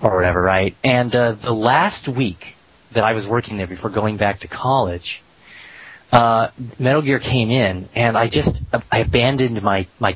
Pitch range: 100-125 Hz